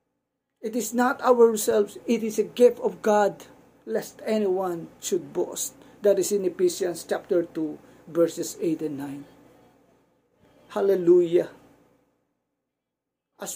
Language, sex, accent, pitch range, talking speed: Filipino, male, native, 200-245 Hz, 115 wpm